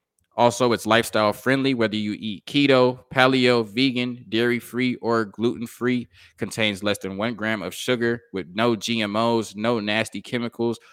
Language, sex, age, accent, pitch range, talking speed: English, male, 20-39, American, 105-125 Hz, 155 wpm